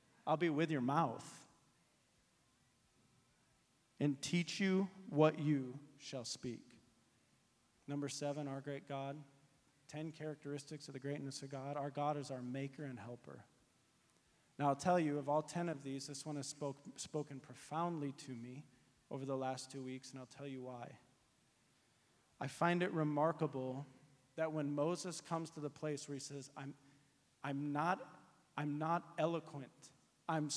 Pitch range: 140-165 Hz